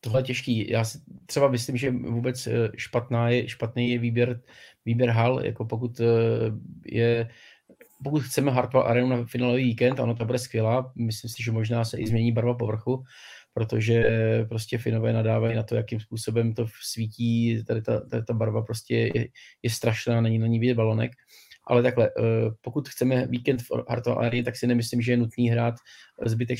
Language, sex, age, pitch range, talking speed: Czech, male, 20-39, 115-120 Hz, 180 wpm